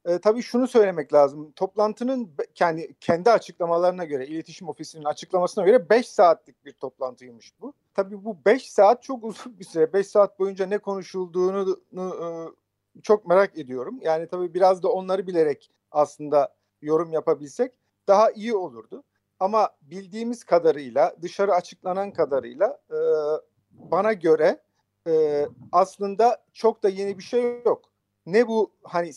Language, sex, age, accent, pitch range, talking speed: Turkish, male, 50-69, native, 150-210 Hz, 140 wpm